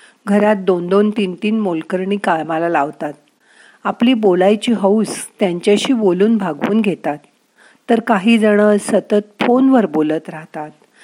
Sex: female